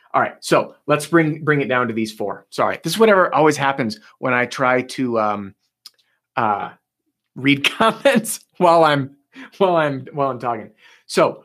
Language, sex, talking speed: English, male, 175 wpm